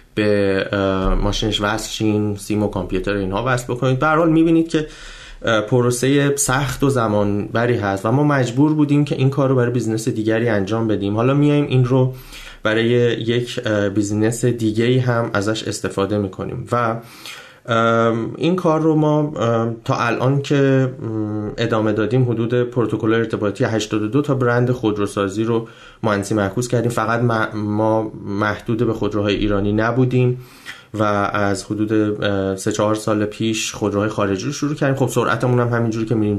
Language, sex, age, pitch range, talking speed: Persian, male, 30-49, 105-125 Hz, 145 wpm